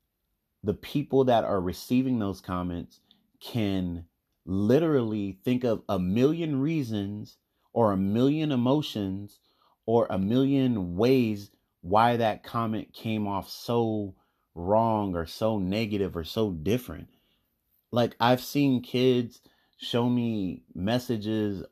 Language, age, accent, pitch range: English, 30-49, American, 90-120 Hz